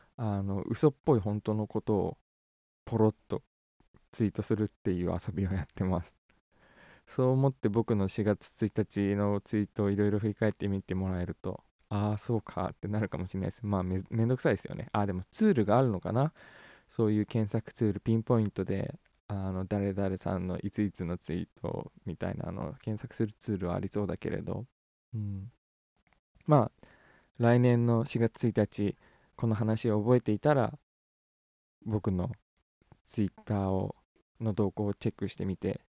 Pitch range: 95-115 Hz